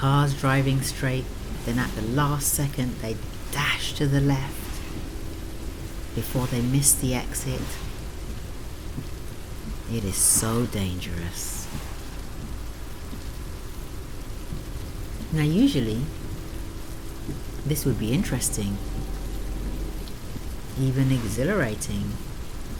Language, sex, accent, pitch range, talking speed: English, female, British, 100-140 Hz, 80 wpm